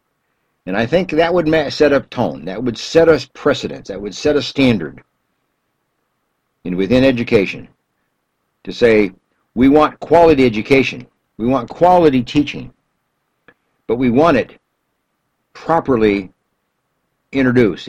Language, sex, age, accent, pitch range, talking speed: English, male, 60-79, American, 95-150 Hz, 120 wpm